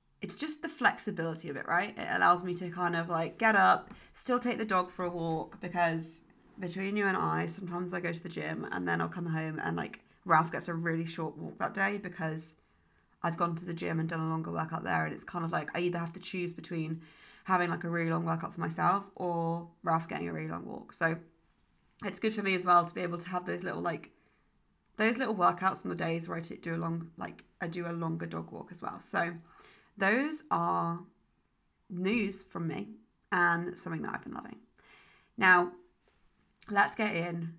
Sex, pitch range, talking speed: female, 165-195 Hz, 215 wpm